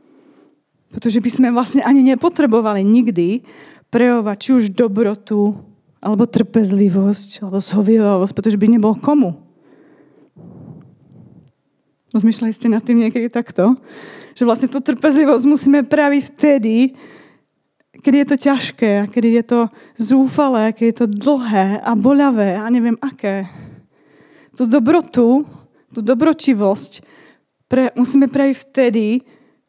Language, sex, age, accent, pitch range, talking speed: Czech, female, 20-39, native, 210-255 Hz, 115 wpm